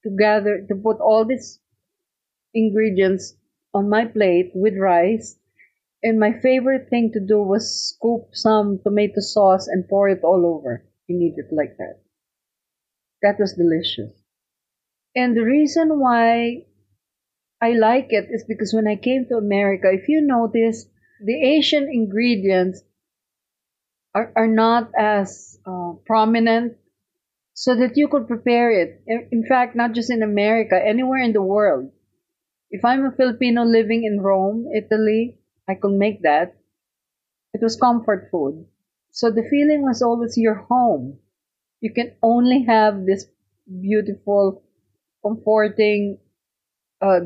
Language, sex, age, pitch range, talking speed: English, female, 40-59, 195-235 Hz, 140 wpm